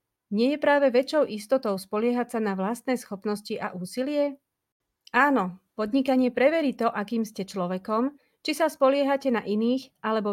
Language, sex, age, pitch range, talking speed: Slovak, female, 30-49, 195-265 Hz, 145 wpm